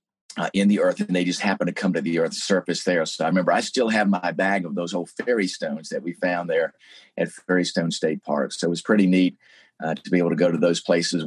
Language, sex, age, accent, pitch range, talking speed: English, male, 40-59, American, 90-105 Hz, 265 wpm